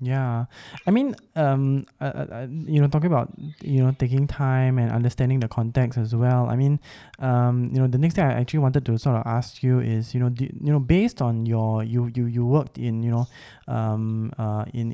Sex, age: male, 20-39